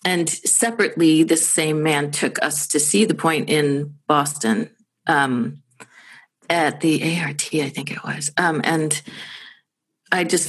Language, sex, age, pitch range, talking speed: English, female, 40-59, 150-180 Hz, 145 wpm